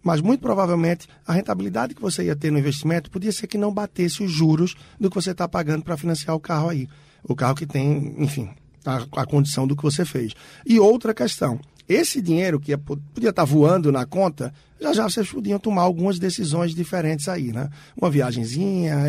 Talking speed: 200 wpm